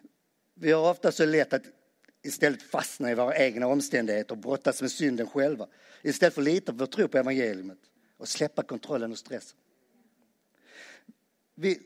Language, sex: Swedish, male